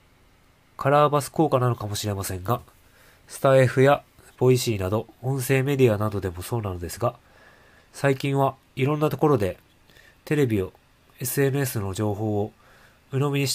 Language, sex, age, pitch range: Japanese, male, 20-39, 105-130 Hz